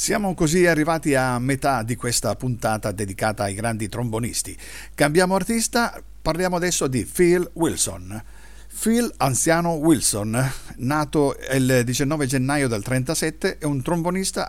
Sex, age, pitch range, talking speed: male, 50-69, 110-150 Hz, 130 wpm